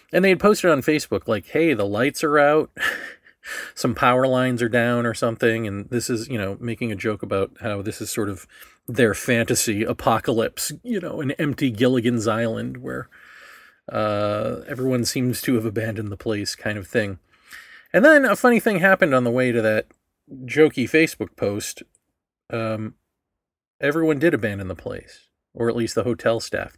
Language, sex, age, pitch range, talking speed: English, male, 40-59, 110-145 Hz, 180 wpm